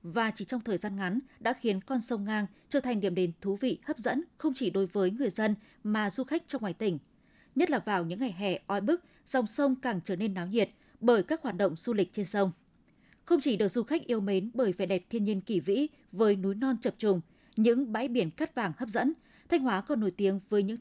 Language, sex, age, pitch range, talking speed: Vietnamese, female, 20-39, 195-255 Hz, 250 wpm